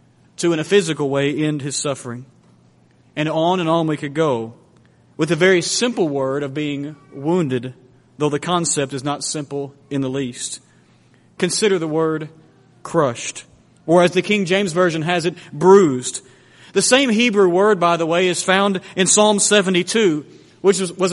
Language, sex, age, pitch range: English, male, 40-59, 155-205 Hz